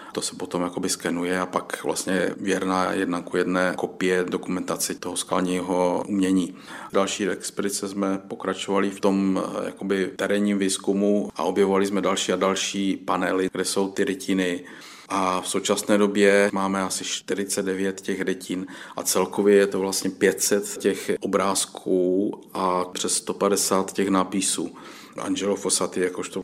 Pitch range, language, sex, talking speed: 95-105 Hz, Czech, male, 135 wpm